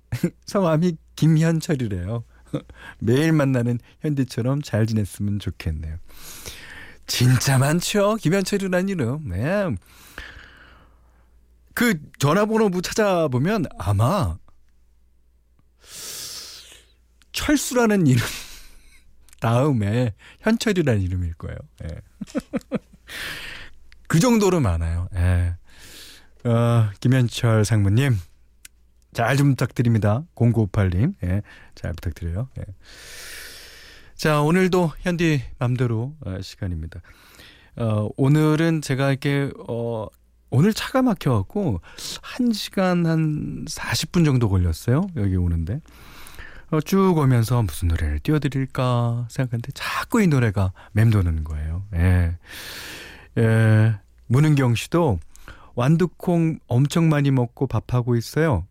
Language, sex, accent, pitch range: Korean, male, native, 95-155 Hz